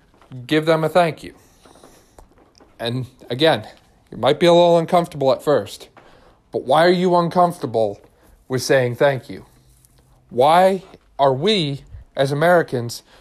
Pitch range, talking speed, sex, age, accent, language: 125-160 Hz, 130 wpm, male, 40-59, American, English